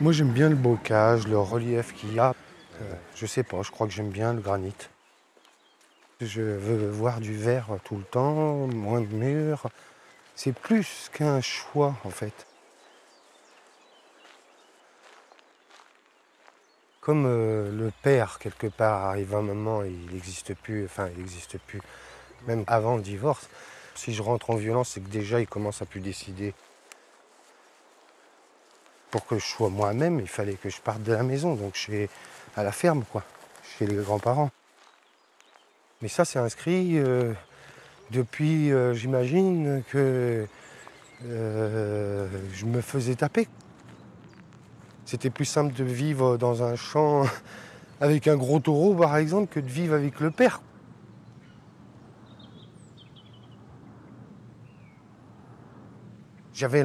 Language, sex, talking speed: French, male, 135 wpm